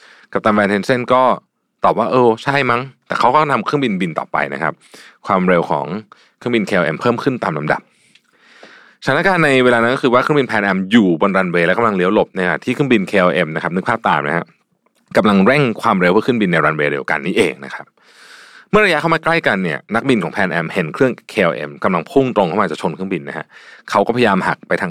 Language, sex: Thai, male